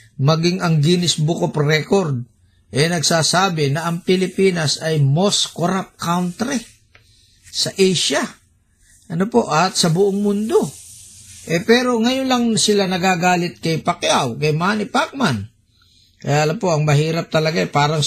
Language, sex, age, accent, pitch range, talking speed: Filipino, male, 50-69, native, 130-190 Hz, 140 wpm